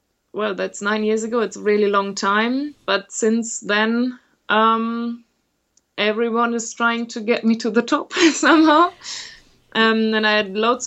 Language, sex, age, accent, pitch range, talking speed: English, female, 20-39, German, 190-235 Hz, 160 wpm